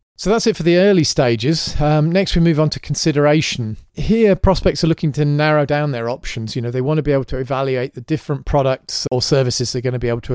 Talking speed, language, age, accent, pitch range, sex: 250 wpm, English, 30-49, British, 115-155 Hz, male